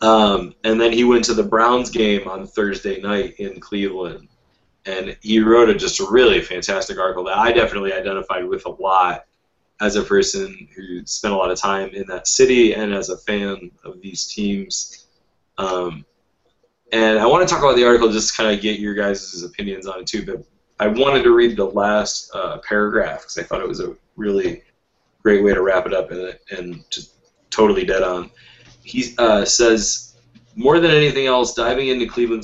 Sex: male